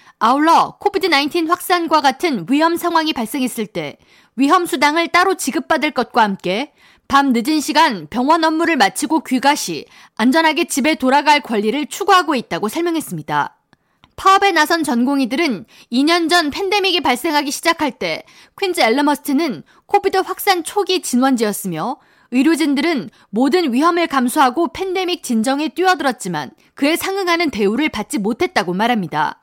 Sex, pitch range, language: female, 255-345 Hz, Korean